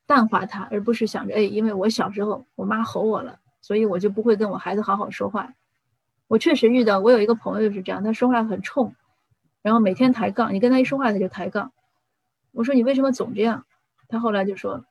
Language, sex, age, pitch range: Chinese, female, 30-49, 195-230 Hz